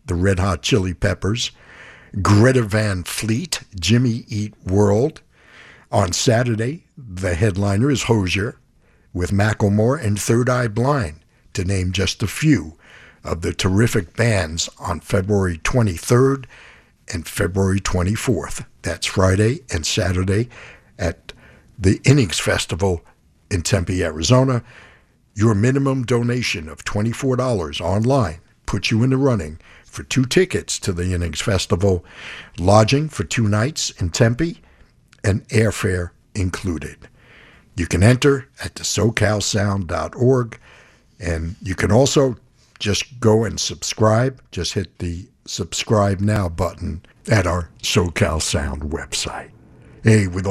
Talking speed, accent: 120 wpm, American